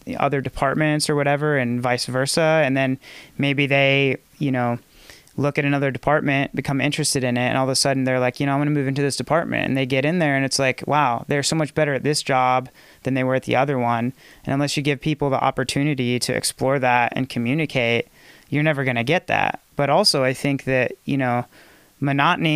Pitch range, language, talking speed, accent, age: 125-145 Hz, English, 230 wpm, American, 30-49